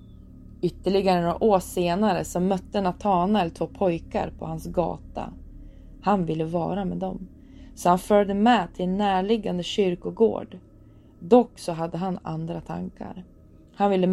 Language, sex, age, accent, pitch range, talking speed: Swedish, female, 20-39, native, 160-195 Hz, 140 wpm